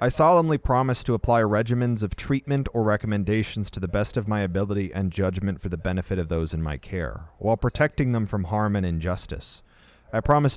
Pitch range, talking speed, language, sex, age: 85-110 Hz, 200 wpm, English, male, 30-49